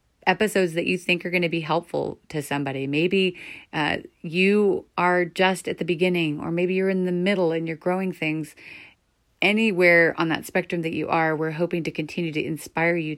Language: English